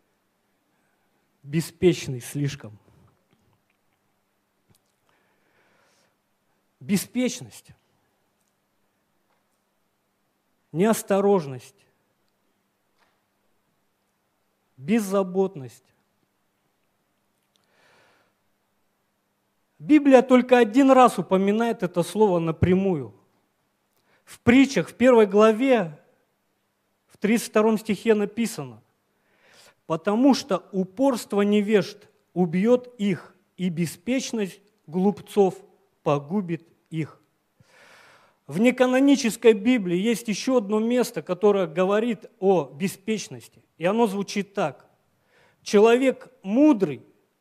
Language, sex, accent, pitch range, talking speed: Russian, male, native, 140-220 Hz, 65 wpm